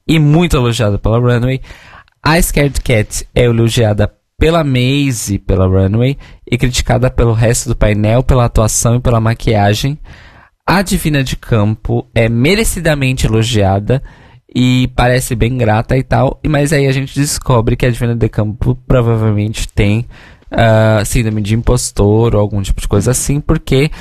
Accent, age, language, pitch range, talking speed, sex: Brazilian, 20-39, Portuguese, 105-130 Hz, 155 wpm, male